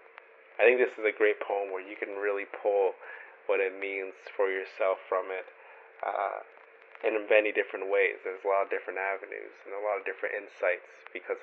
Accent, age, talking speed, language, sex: American, 20-39, 195 wpm, English, male